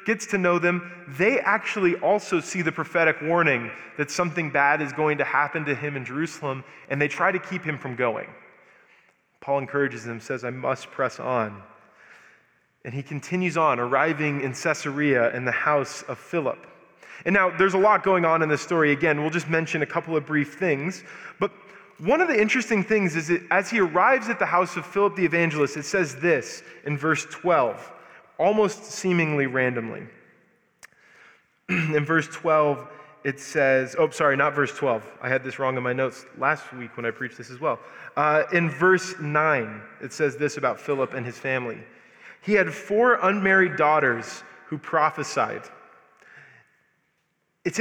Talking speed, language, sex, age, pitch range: 175 wpm, English, male, 20-39, 145-185 Hz